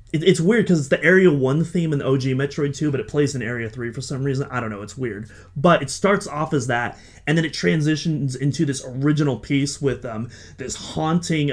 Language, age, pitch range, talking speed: English, 30-49, 120-155 Hz, 235 wpm